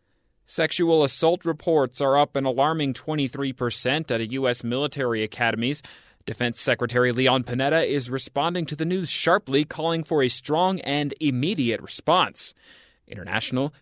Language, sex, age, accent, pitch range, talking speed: English, male, 30-49, American, 120-160 Hz, 135 wpm